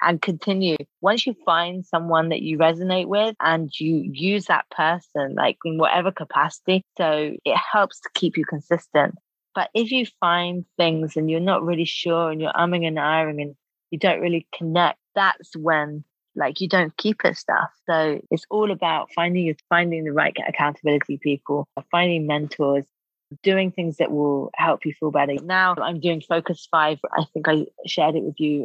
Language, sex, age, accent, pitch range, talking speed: English, female, 30-49, British, 155-180 Hz, 180 wpm